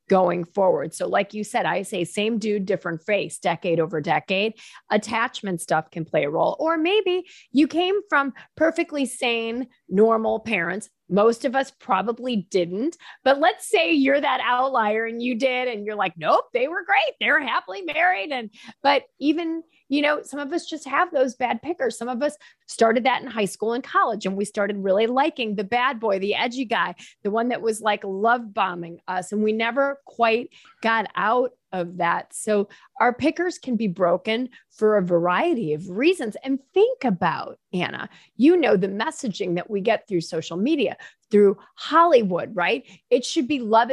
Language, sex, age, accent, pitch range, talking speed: English, female, 30-49, American, 205-285 Hz, 185 wpm